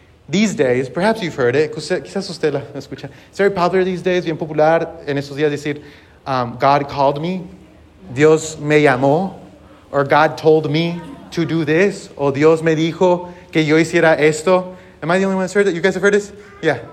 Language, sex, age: English, male, 30-49